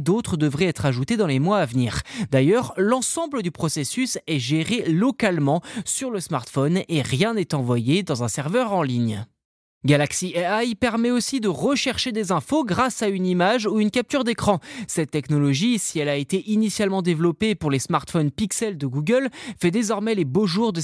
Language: French